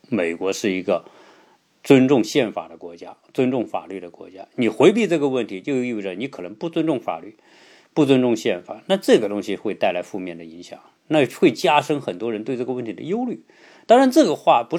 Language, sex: Chinese, male